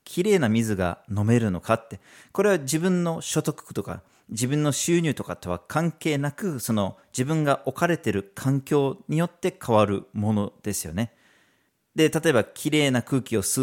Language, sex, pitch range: Japanese, male, 105-150 Hz